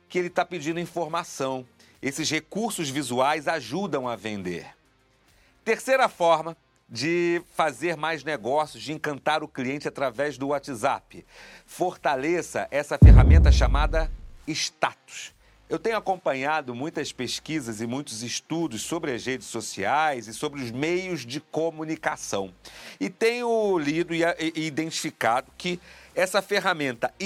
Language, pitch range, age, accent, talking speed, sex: Portuguese, 135-180 Hz, 40-59, Brazilian, 120 wpm, male